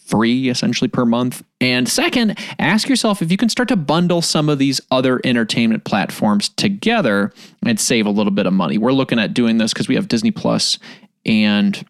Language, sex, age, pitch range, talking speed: English, male, 20-39, 145-215 Hz, 195 wpm